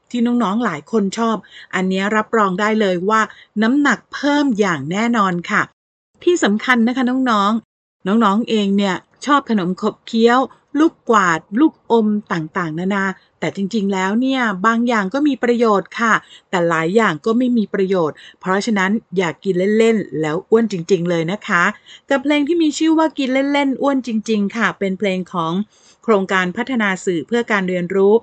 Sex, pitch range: female, 185-235 Hz